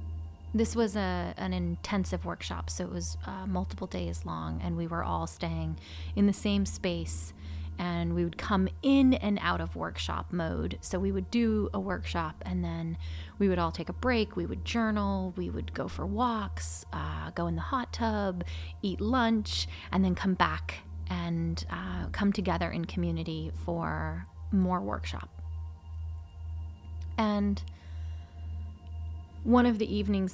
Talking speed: 160 wpm